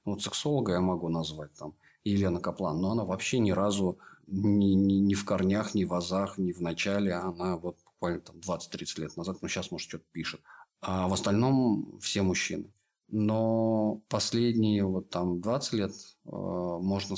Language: Russian